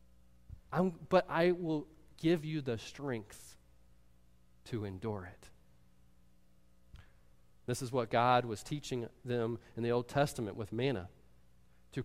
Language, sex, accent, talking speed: English, male, American, 120 wpm